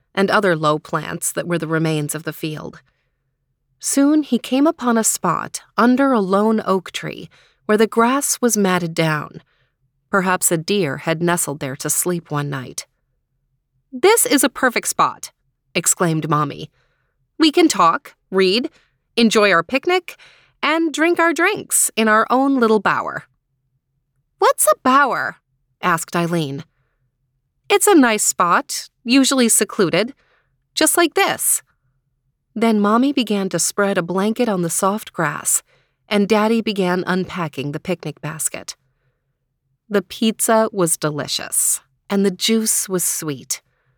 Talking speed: 140 wpm